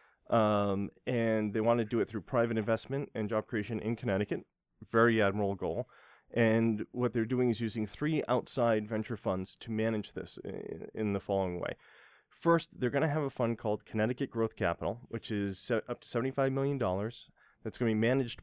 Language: English